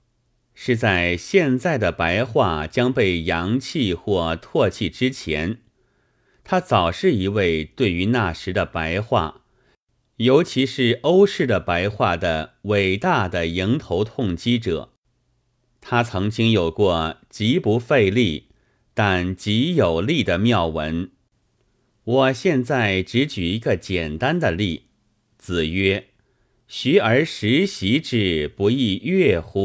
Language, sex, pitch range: Chinese, male, 95-125 Hz